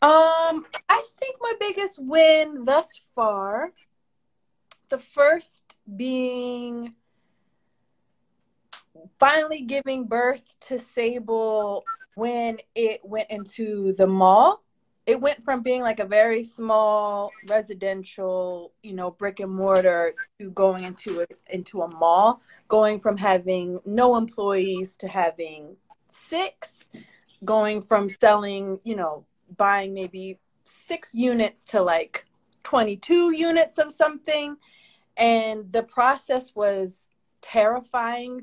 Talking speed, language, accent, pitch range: 110 wpm, English, American, 195-255 Hz